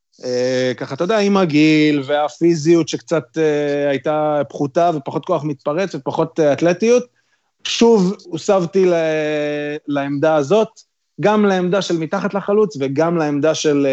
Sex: male